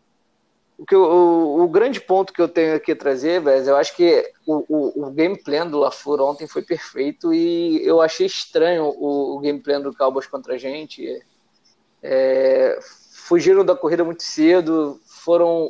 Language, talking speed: Portuguese, 175 wpm